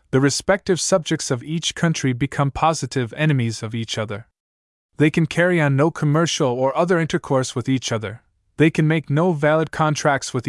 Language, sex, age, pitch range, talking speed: English, male, 20-39, 125-160 Hz, 175 wpm